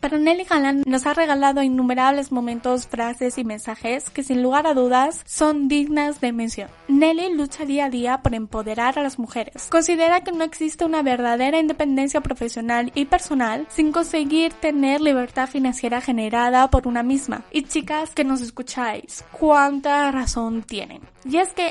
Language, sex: Spanish, female